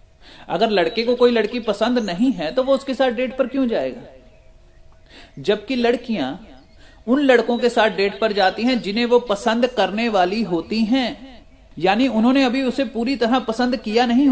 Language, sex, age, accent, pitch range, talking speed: Hindi, male, 30-49, native, 170-240 Hz, 175 wpm